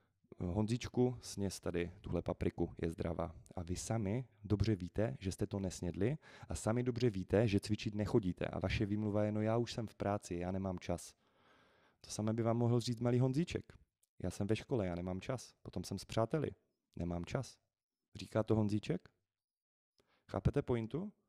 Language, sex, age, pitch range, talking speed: Czech, male, 30-49, 95-115 Hz, 175 wpm